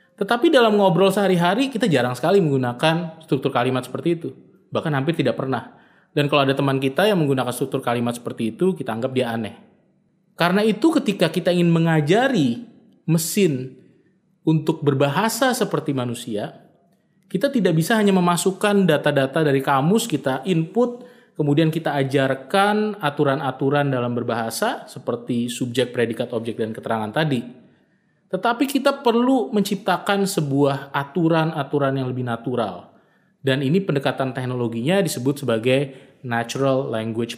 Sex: male